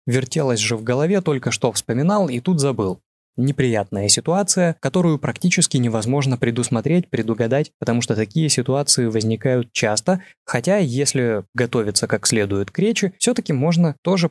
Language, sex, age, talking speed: Russian, male, 20-39, 140 wpm